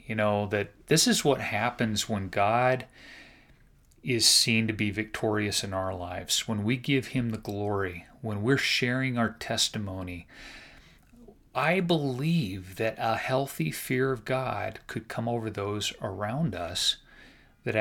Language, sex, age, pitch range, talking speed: English, male, 30-49, 100-125 Hz, 145 wpm